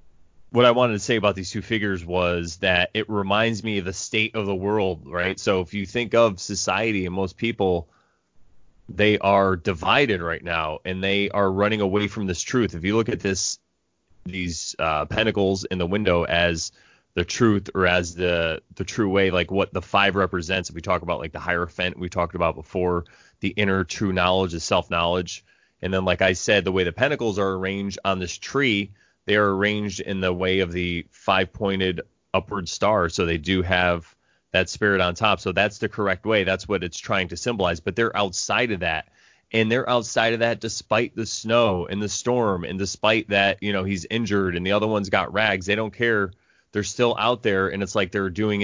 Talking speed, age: 210 wpm, 20-39